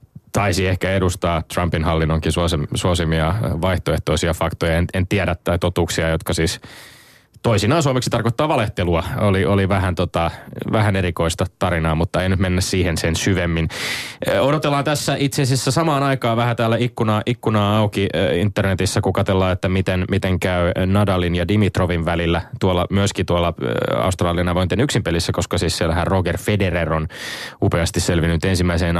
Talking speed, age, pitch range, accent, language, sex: 145 wpm, 20-39, 85-110 Hz, native, Finnish, male